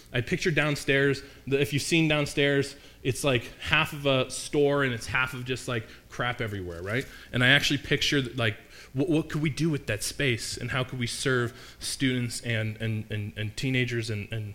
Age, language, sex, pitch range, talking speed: 20-39, English, male, 110-145 Hz, 200 wpm